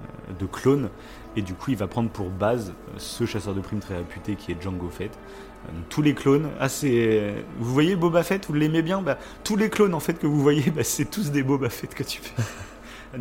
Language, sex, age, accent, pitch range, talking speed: French, male, 30-49, French, 100-140 Hz, 235 wpm